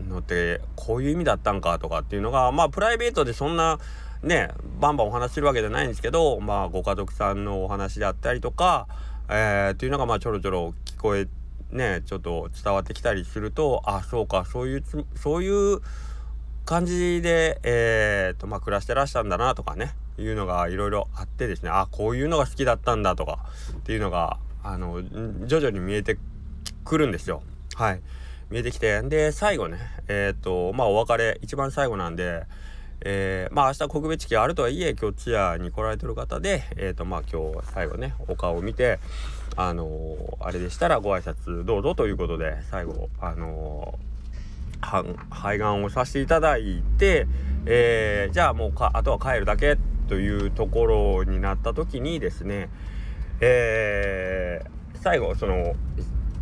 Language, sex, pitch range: Japanese, male, 85-115 Hz